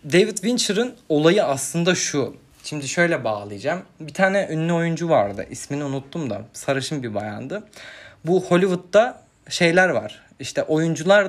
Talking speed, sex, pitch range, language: 135 wpm, male, 130-180 Hz, Turkish